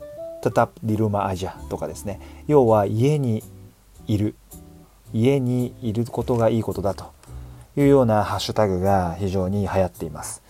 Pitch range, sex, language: 95-115 Hz, male, Japanese